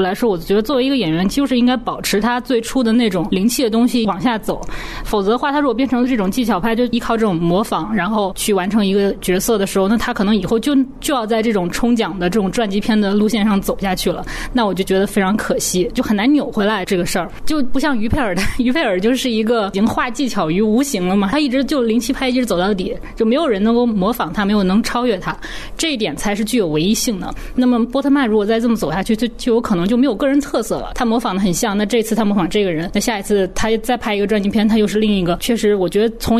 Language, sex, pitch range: Chinese, female, 195-240 Hz